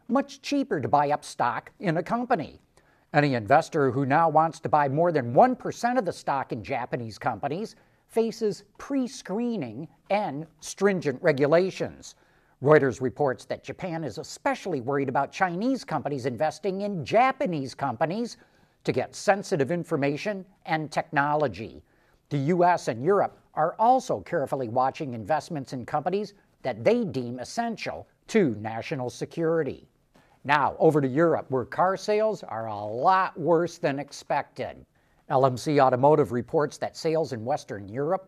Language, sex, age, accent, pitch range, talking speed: English, male, 50-69, American, 140-195 Hz, 140 wpm